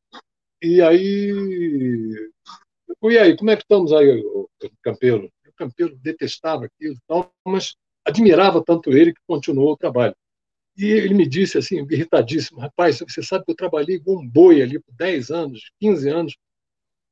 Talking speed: 160 wpm